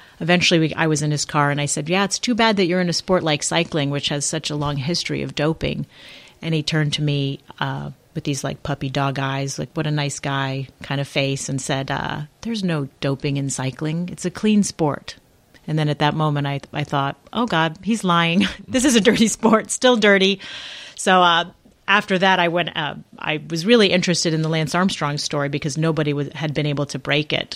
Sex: female